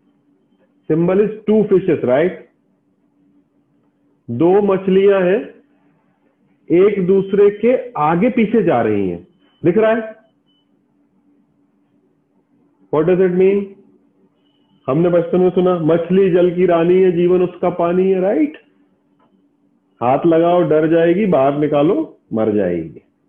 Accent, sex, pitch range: native, male, 150-190 Hz